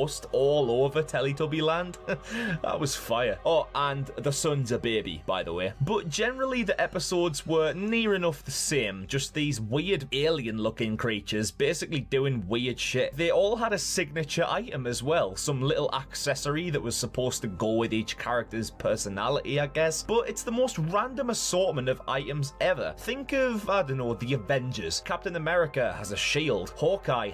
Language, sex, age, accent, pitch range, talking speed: English, male, 20-39, British, 120-175 Hz, 170 wpm